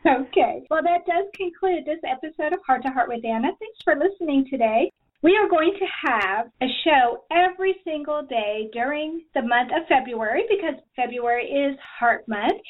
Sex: female